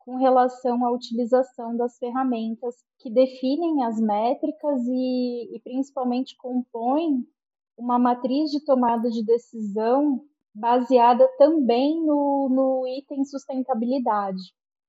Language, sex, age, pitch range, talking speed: Portuguese, female, 20-39, 225-265 Hz, 105 wpm